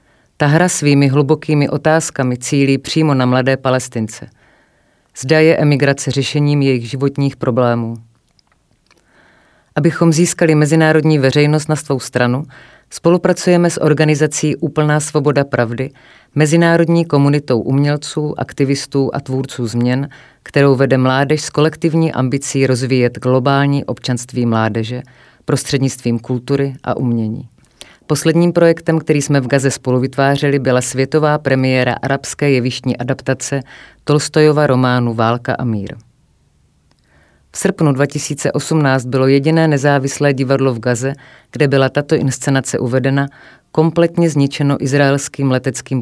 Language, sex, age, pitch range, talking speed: Czech, female, 30-49, 125-150 Hz, 115 wpm